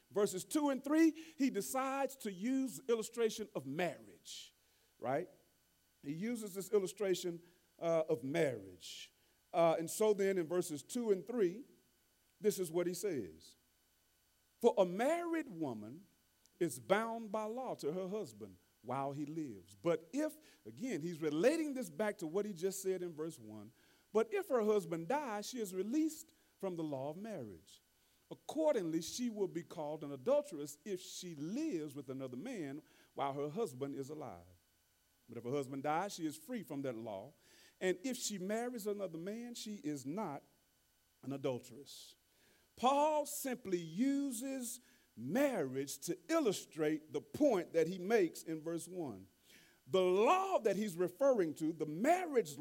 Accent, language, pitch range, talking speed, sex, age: American, English, 155-245 Hz, 155 wpm, male, 40-59